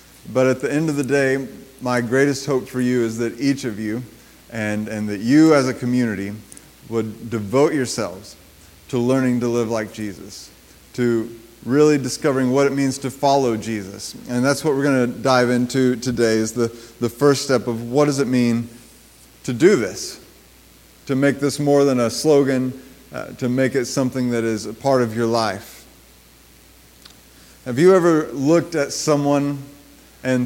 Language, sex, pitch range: English, male, 110-130 Hz